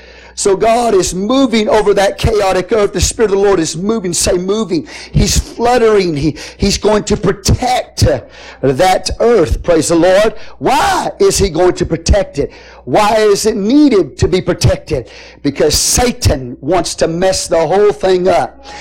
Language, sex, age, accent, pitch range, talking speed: English, male, 50-69, American, 180-225 Hz, 165 wpm